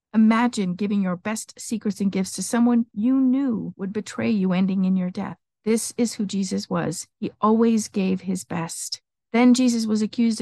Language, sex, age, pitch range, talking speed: English, female, 50-69, 190-240 Hz, 185 wpm